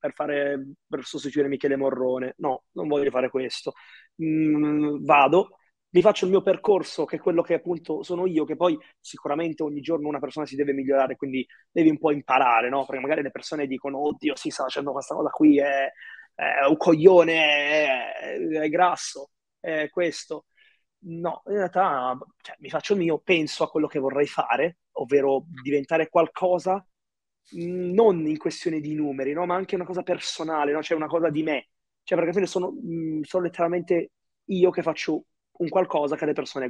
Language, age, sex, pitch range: Italian, 20-39, male, 145-180 Hz